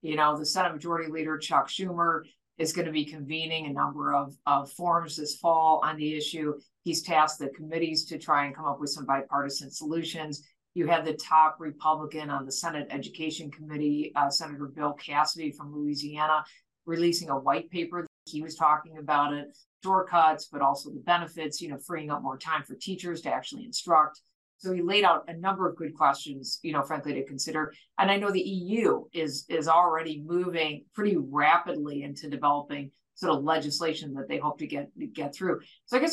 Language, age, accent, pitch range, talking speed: English, 50-69, American, 150-180 Hz, 195 wpm